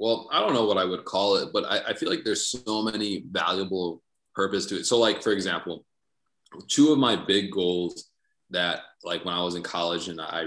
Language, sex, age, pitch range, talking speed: English, male, 20-39, 90-100 Hz, 225 wpm